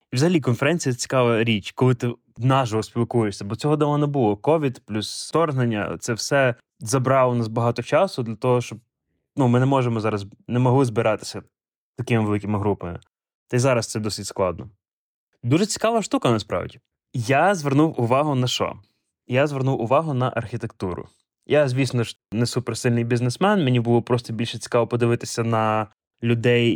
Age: 20-39